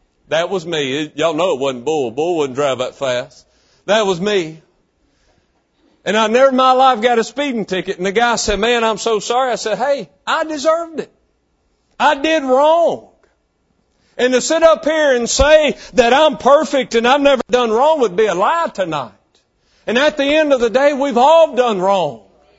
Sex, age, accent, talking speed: male, 50-69, American, 195 wpm